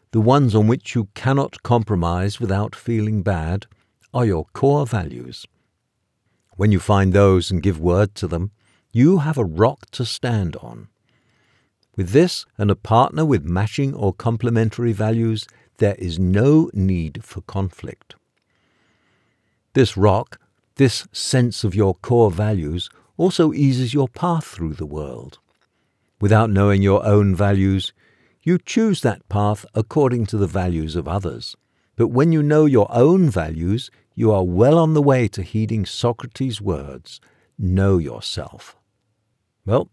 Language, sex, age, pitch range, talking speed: English, male, 60-79, 95-120 Hz, 145 wpm